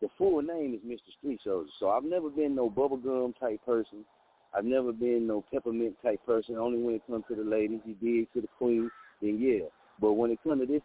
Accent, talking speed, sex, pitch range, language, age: American, 230 wpm, male, 125-185 Hz, English, 40-59